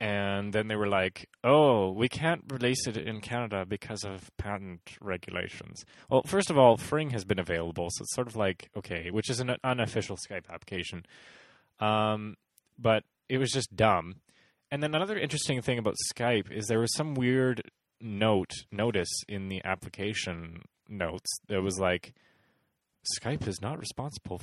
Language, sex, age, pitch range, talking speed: English, male, 20-39, 95-120 Hz, 165 wpm